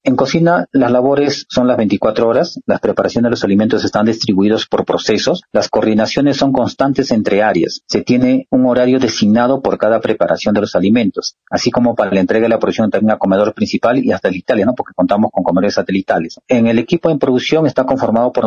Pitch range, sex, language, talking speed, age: 100-130 Hz, male, Spanish, 205 wpm, 40-59